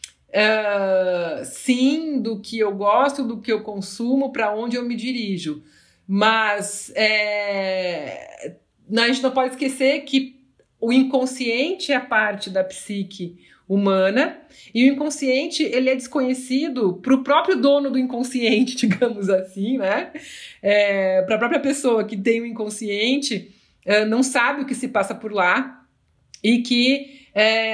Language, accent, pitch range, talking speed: Portuguese, Brazilian, 215-265 Hz, 145 wpm